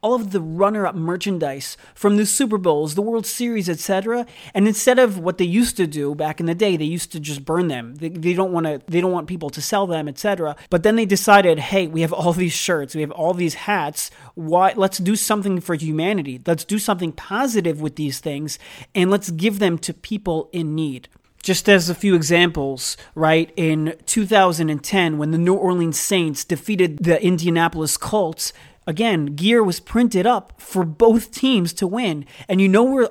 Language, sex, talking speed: English, male, 200 wpm